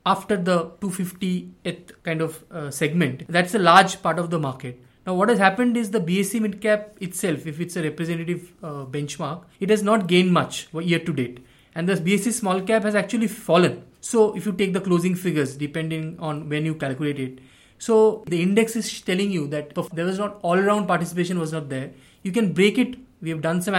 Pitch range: 160-205 Hz